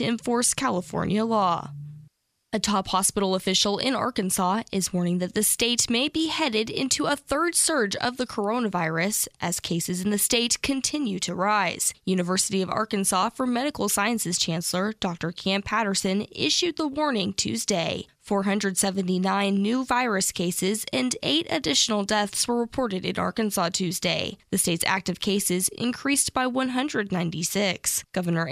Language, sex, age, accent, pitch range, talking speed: English, female, 10-29, American, 185-235 Hz, 140 wpm